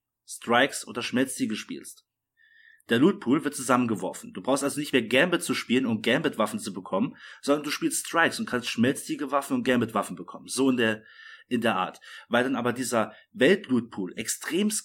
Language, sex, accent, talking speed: German, male, German, 170 wpm